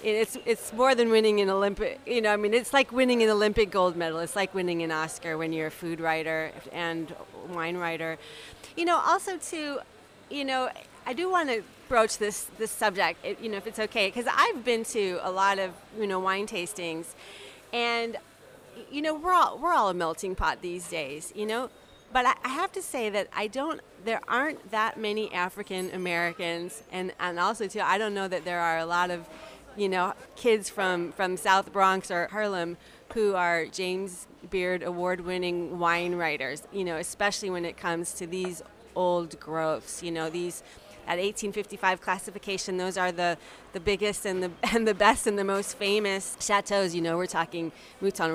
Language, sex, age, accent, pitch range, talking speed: English, female, 30-49, American, 170-215 Hz, 190 wpm